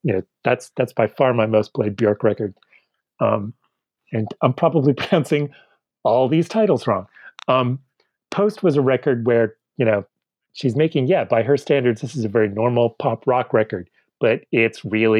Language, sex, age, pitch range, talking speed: English, male, 30-49, 110-145 Hz, 180 wpm